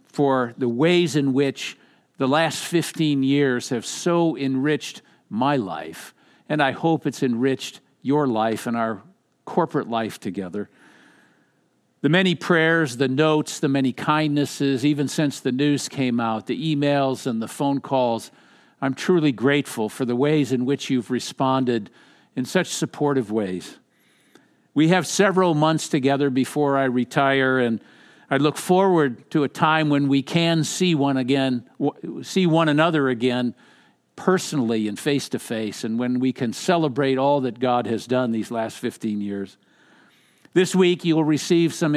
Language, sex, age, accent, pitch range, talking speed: English, male, 50-69, American, 130-155 Hz, 155 wpm